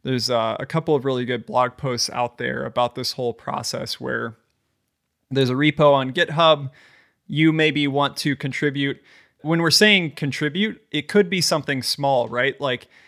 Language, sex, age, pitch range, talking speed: English, male, 20-39, 125-155 Hz, 170 wpm